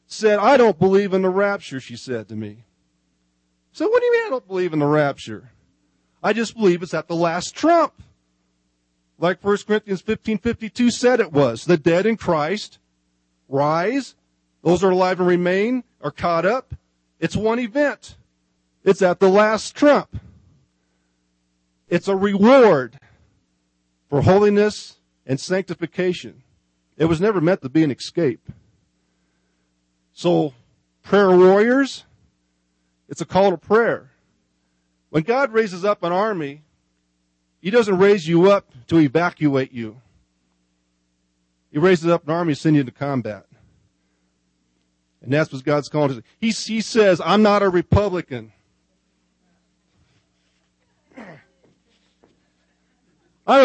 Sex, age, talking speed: male, 40-59, 135 wpm